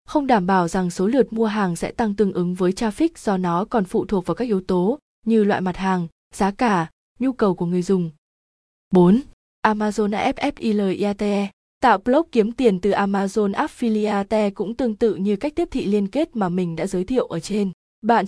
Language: Vietnamese